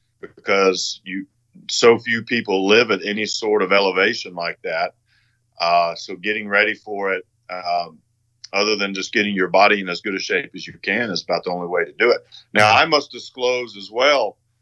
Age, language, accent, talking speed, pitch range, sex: 40-59, English, American, 195 wpm, 95-115 Hz, male